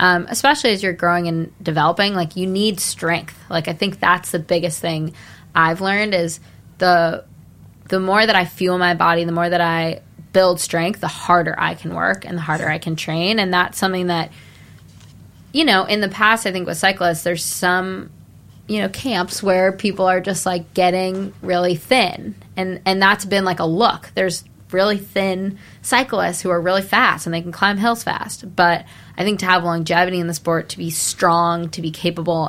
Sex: female